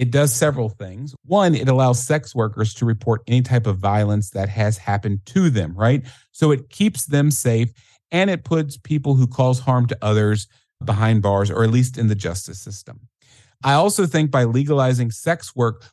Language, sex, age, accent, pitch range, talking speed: English, male, 40-59, American, 115-145 Hz, 190 wpm